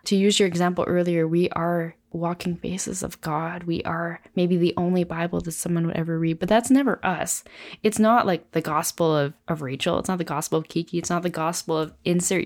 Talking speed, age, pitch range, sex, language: 220 wpm, 20-39, 165-210 Hz, female, English